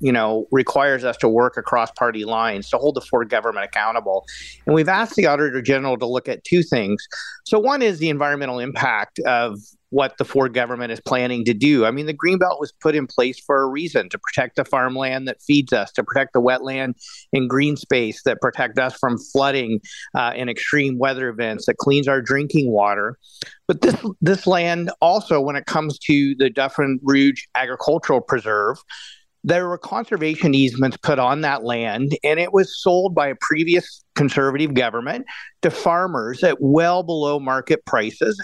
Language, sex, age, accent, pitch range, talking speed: English, male, 40-59, American, 130-170 Hz, 185 wpm